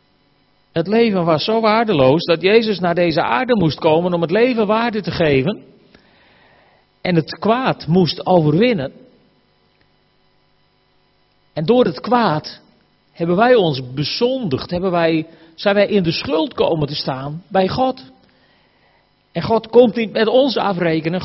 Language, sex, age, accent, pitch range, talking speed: Dutch, male, 50-69, Dutch, 165-225 Hz, 135 wpm